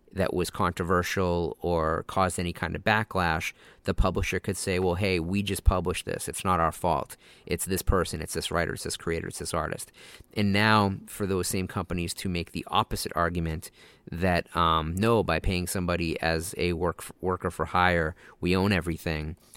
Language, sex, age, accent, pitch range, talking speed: English, male, 30-49, American, 85-100 Hz, 190 wpm